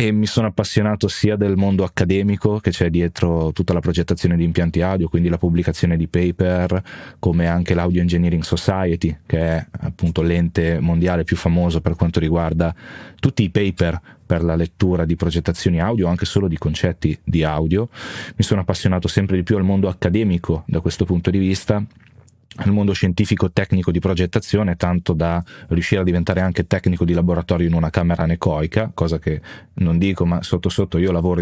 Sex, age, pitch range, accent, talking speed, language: male, 30-49, 85-105 Hz, native, 180 wpm, Italian